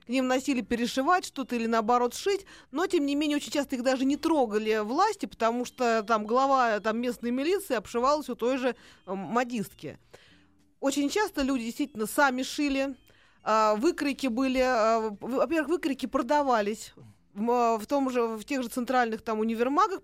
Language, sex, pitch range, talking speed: Russian, female, 220-275 Hz, 160 wpm